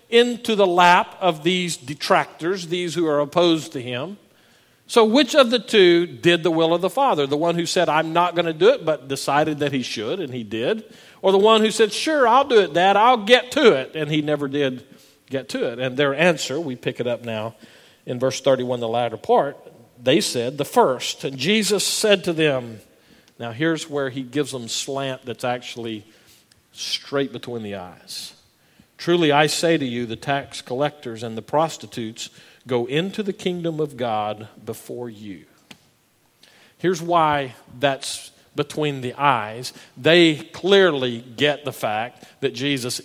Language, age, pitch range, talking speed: English, 50-69, 130-185 Hz, 180 wpm